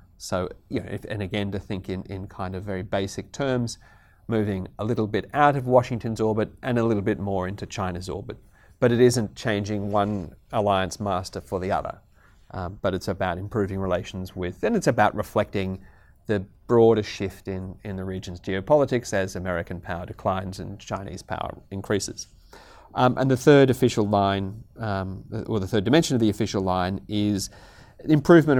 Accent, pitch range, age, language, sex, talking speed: Australian, 95-115 Hz, 30-49, English, male, 180 wpm